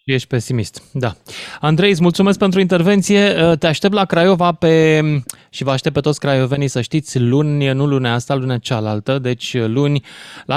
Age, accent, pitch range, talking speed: 20-39, native, 120-150 Hz, 170 wpm